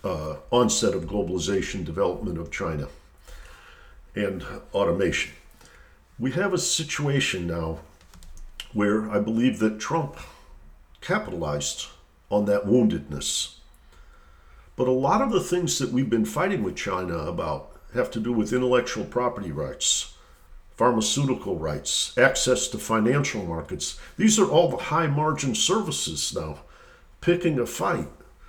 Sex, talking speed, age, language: male, 125 wpm, 50-69, English